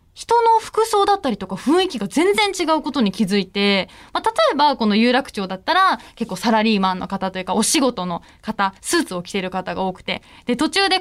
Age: 20-39